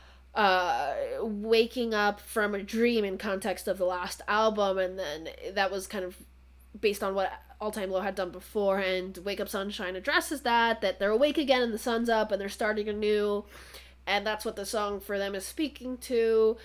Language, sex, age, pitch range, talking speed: English, female, 20-39, 175-210 Hz, 195 wpm